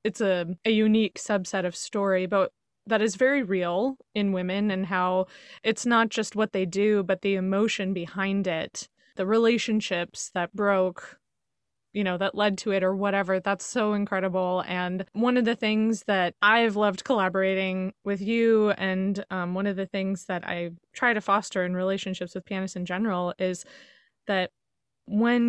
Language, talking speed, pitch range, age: English, 170 wpm, 185-215 Hz, 20-39